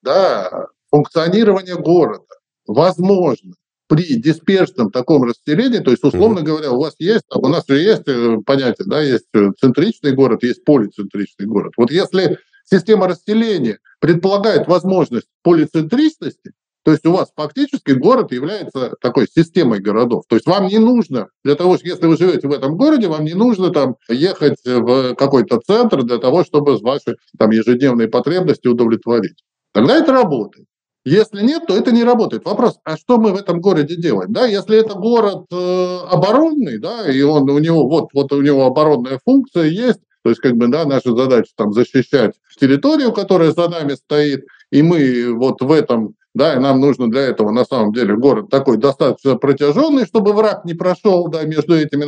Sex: male